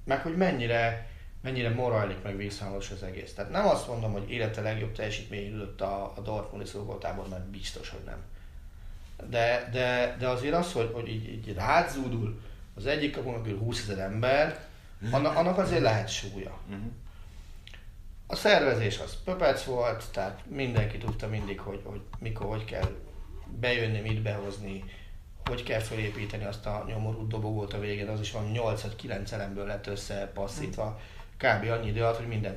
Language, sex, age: Hungarian, male, 30-49